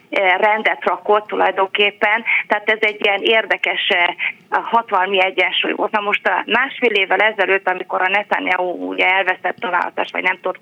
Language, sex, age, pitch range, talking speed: Hungarian, female, 30-49, 185-230 Hz, 135 wpm